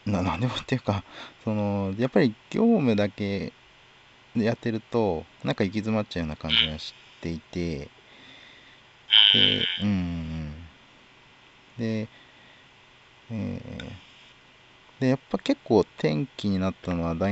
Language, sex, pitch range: Japanese, male, 85-120 Hz